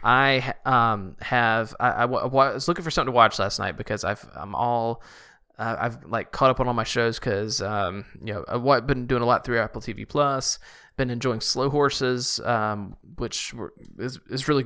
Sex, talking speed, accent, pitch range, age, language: male, 205 wpm, American, 110-145 Hz, 20-39, English